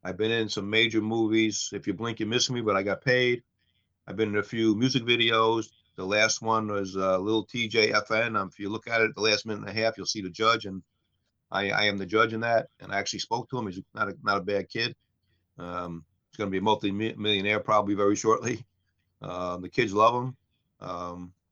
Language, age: English, 40-59